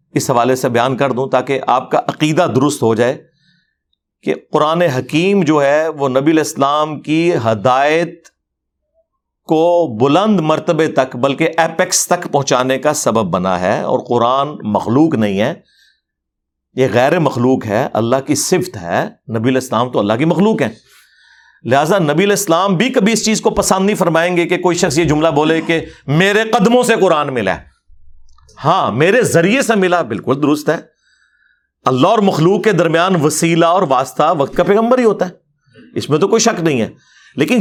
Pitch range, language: 140-200 Hz, Urdu